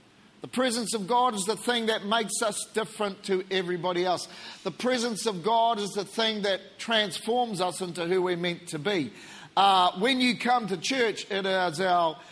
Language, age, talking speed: English, 40-59, 190 wpm